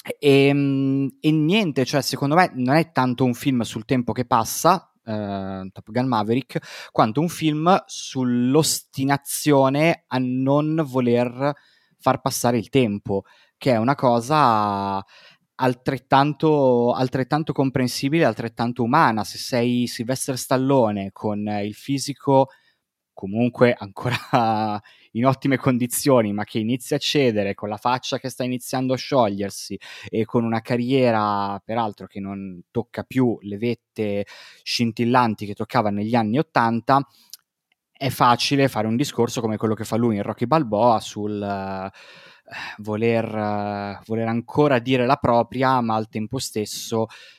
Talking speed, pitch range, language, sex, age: 135 wpm, 110-135 Hz, Italian, male, 20-39